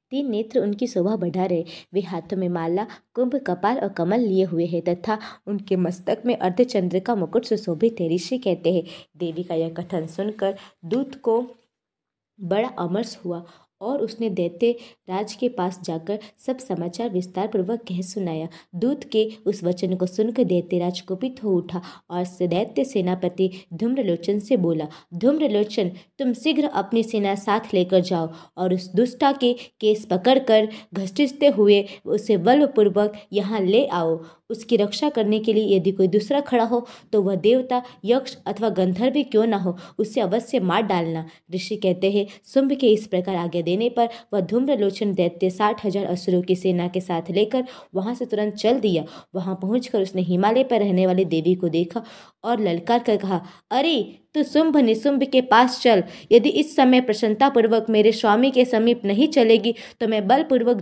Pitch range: 185-240 Hz